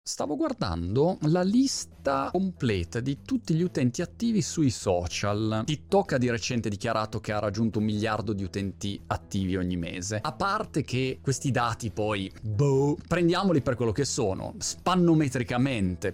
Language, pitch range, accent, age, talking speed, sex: Italian, 105-145 Hz, native, 30-49, 150 wpm, male